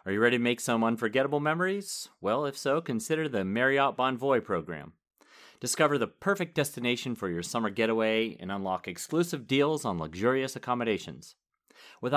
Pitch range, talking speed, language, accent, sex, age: 115-170 Hz, 160 wpm, English, American, male, 30-49